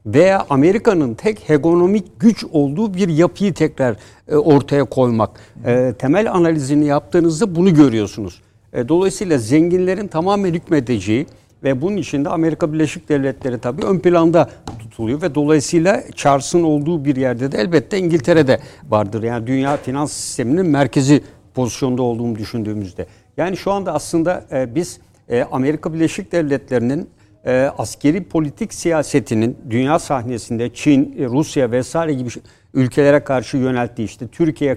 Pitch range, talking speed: 125-170 Hz, 125 wpm